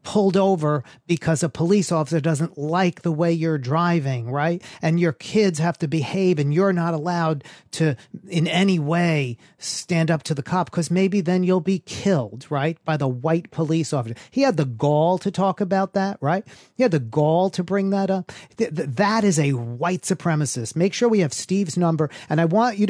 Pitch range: 150-190 Hz